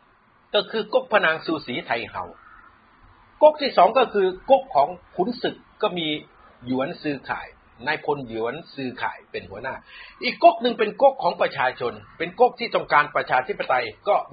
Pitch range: 170-240 Hz